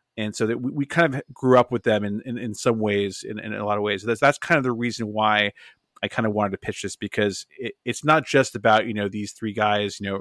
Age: 30-49